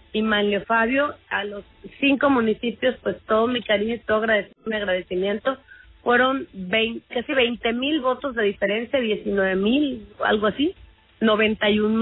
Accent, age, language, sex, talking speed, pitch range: Mexican, 30-49, Spanish, female, 140 wpm, 195-235 Hz